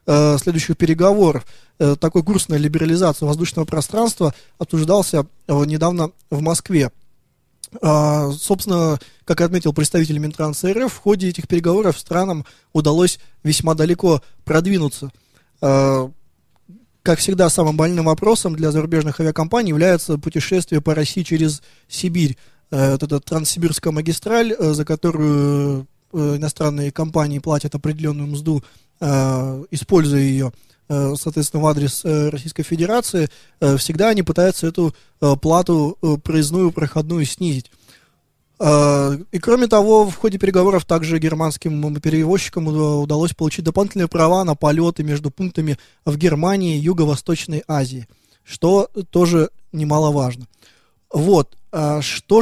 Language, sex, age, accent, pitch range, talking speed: Russian, male, 20-39, native, 150-175 Hz, 105 wpm